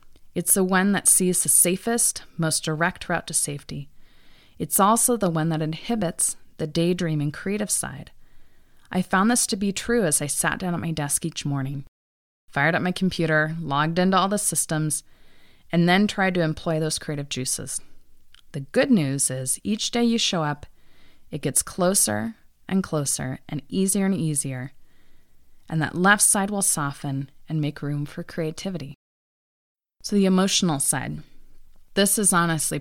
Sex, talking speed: female, 165 wpm